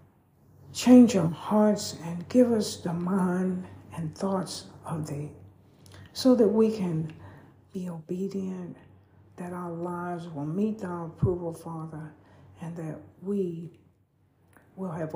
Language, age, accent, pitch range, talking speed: English, 60-79, American, 160-220 Hz, 125 wpm